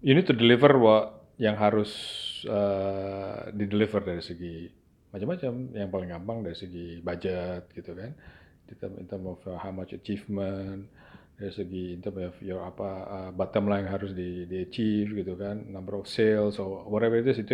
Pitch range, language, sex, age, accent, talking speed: 95-115 Hz, Indonesian, male, 40-59, native, 170 wpm